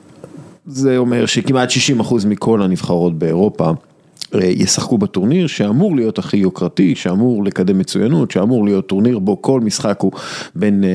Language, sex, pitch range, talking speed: English, male, 95-135 Hz, 125 wpm